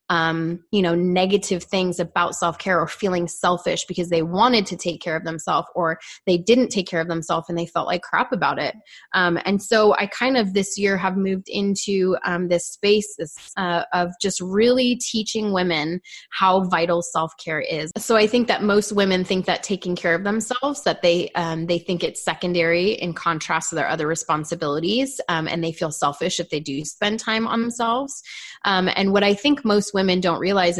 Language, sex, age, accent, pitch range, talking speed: English, female, 20-39, American, 170-205 Hz, 200 wpm